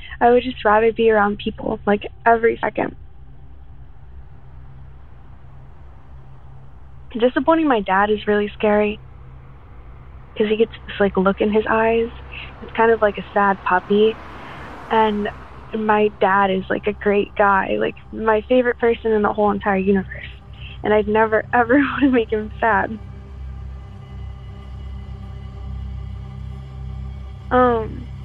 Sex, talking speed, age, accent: female, 125 wpm, 10-29, American